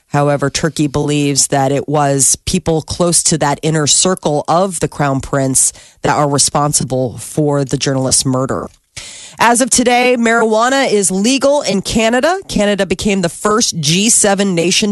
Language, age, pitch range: Japanese, 30-49, 150-210 Hz